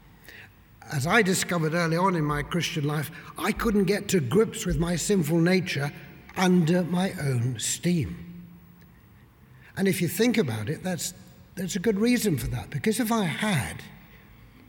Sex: male